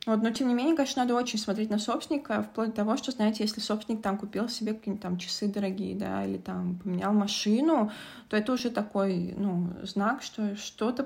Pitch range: 195-225 Hz